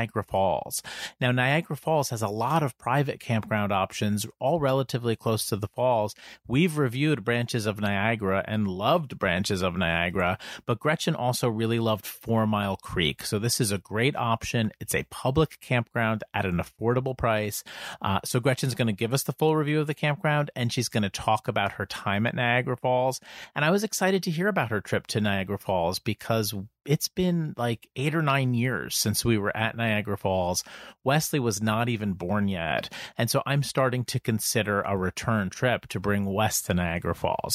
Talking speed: 195 wpm